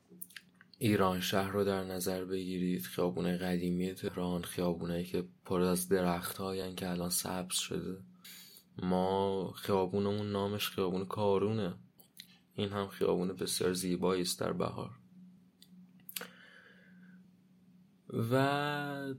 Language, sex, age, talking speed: Persian, male, 20-39, 105 wpm